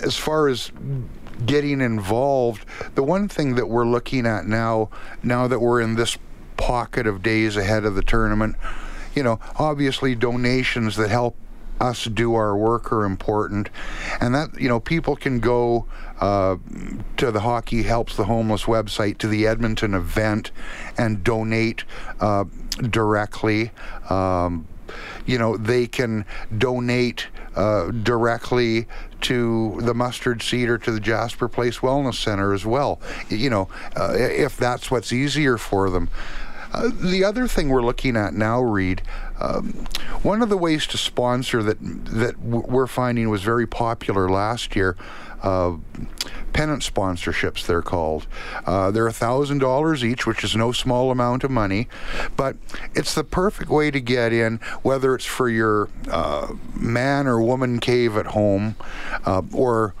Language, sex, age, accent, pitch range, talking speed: English, male, 60-79, American, 105-125 Hz, 155 wpm